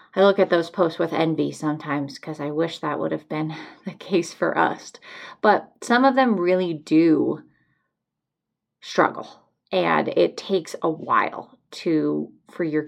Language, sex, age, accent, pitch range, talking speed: English, female, 20-39, American, 160-205 Hz, 160 wpm